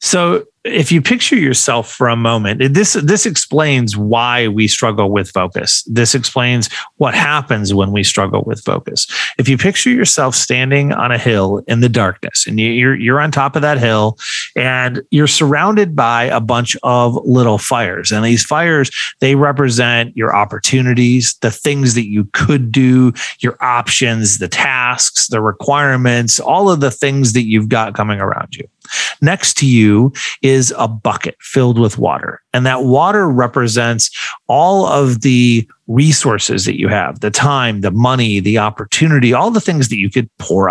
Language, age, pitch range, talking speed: English, 30-49, 110-145 Hz, 170 wpm